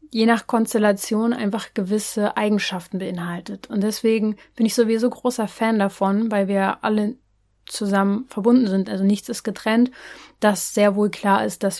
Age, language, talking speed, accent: 30-49, German, 160 wpm, German